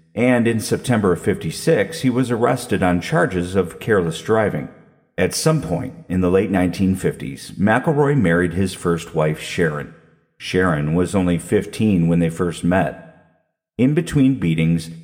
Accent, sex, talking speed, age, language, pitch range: American, male, 150 wpm, 50-69, English, 85-115 Hz